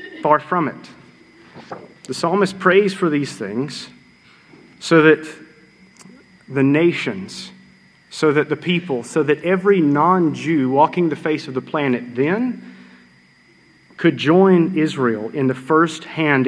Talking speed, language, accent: 130 wpm, English, American